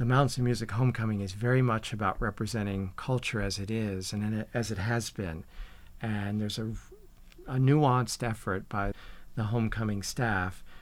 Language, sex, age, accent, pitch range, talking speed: English, male, 50-69, American, 100-125 Hz, 160 wpm